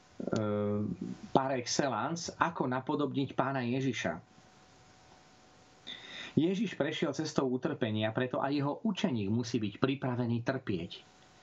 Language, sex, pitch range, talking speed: Slovak, male, 120-170 Hz, 95 wpm